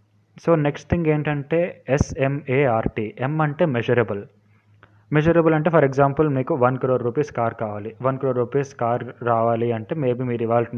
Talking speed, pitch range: 145 wpm, 115-140 Hz